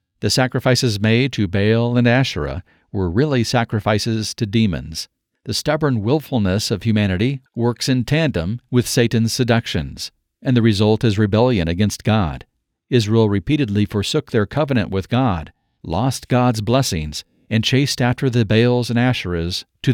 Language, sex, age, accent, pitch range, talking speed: English, male, 50-69, American, 100-125 Hz, 145 wpm